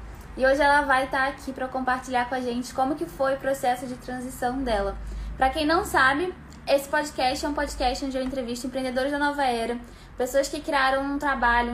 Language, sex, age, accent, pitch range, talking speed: Portuguese, female, 10-29, Brazilian, 245-285 Hz, 205 wpm